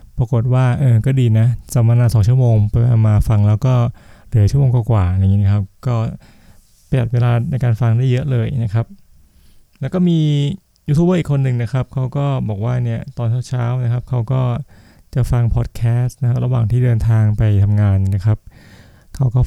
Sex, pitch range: male, 115-130 Hz